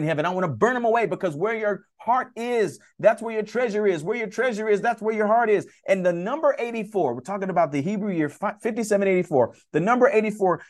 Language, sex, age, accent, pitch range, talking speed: English, male, 40-59, American, 165-215 Hz, 225 wpm